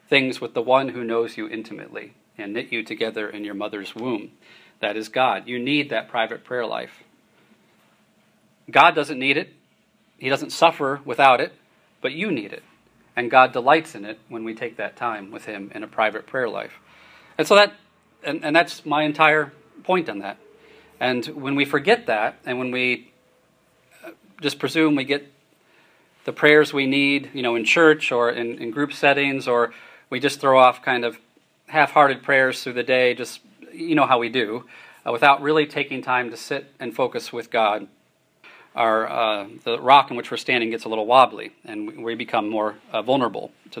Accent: American